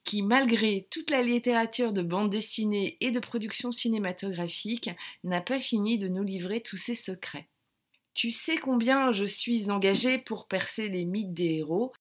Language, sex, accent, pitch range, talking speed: French, female, French, 190-240 Hz, 165 wpm